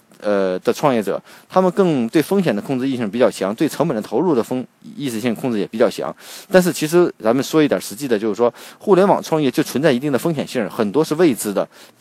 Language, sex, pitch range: Chinese, male, 130-180 Hz